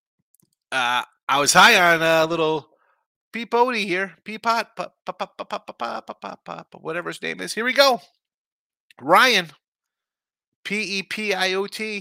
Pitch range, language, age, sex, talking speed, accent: 150-210 Hz, English, 30-49, male, 140 wpm, American